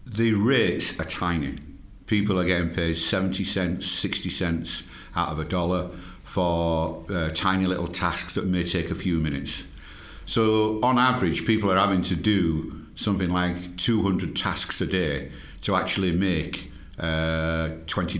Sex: male